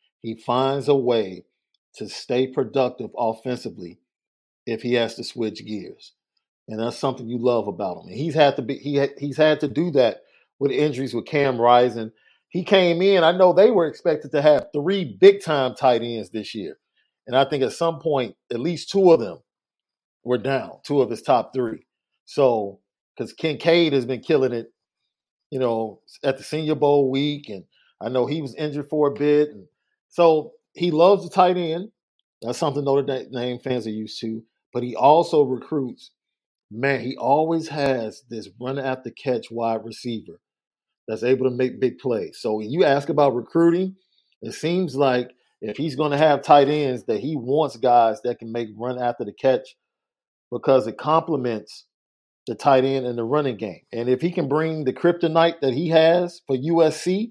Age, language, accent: 40-59, English, American